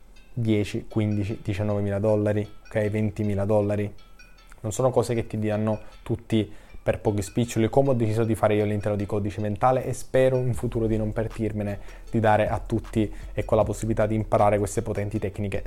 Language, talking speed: Italian, 190 wpm